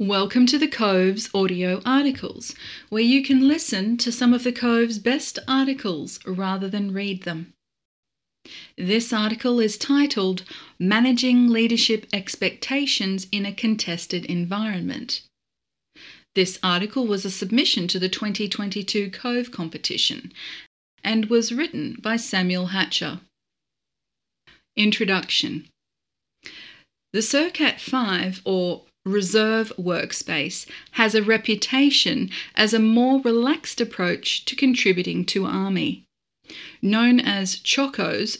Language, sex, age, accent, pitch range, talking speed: English, female, 40-59, Australian, 190-245 Hz, 110 wpm